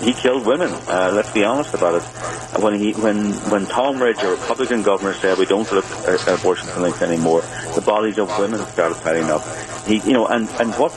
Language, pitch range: English, 90-110 Hz